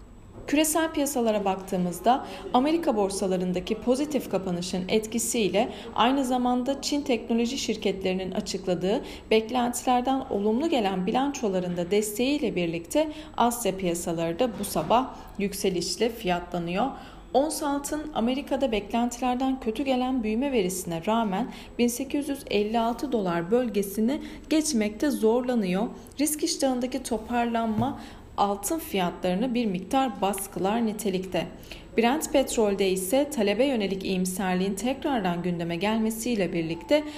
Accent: native